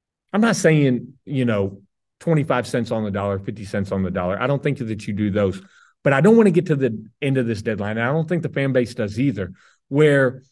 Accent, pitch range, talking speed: American, 110-150 Hz, 245 wpm